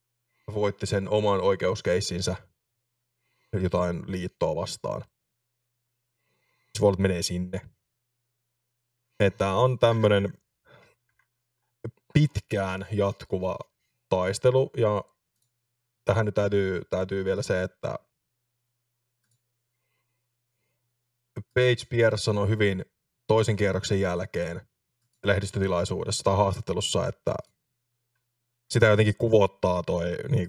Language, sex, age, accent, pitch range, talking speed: Finnish, male, 20-39, native, 95-120 Hz, 80 wpm